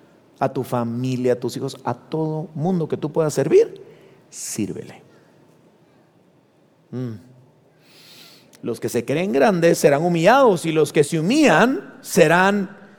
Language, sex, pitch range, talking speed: Spanish, male, 155-230 Hz, 130 wpm